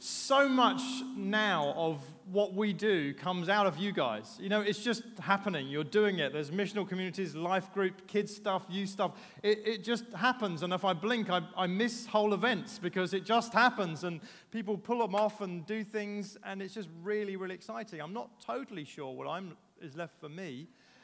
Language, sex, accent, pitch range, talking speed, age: English, male, British, 170-215 Hz, 200 wpm, 30-49